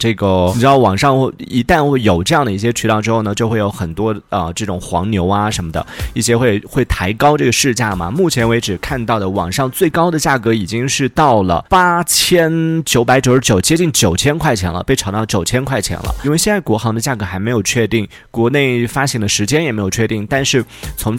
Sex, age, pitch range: male, 30-49, 100-135 Hz